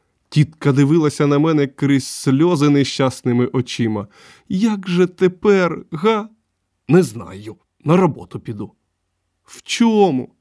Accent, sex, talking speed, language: native, male, 110 wpm, Ukrainian